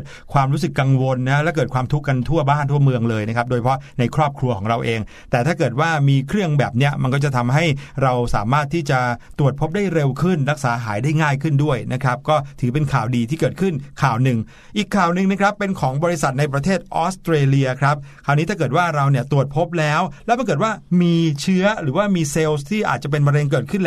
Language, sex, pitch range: Thai, male, 130-165 Hz